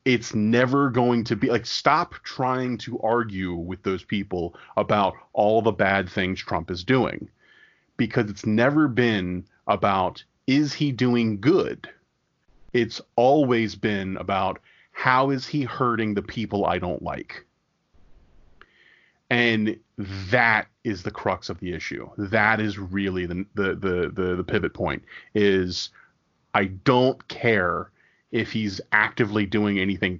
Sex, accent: male, American